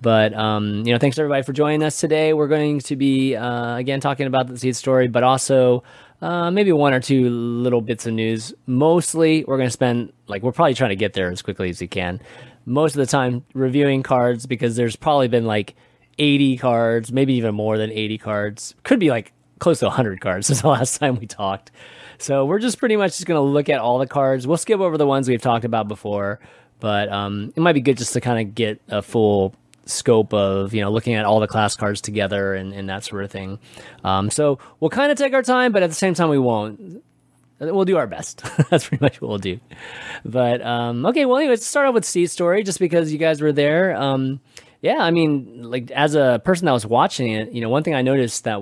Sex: male